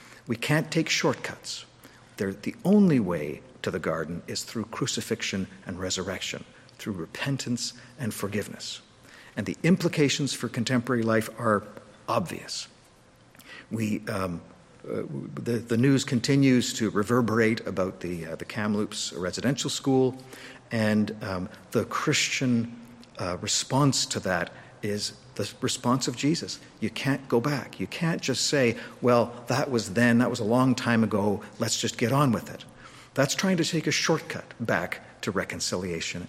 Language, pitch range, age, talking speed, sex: English, 105-130 Hz, 50-69, 150 wpm, male